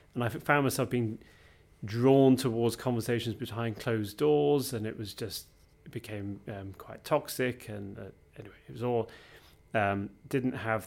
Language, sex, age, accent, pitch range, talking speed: English, male, 30-49, British, 100-120 Hz, 160 wpm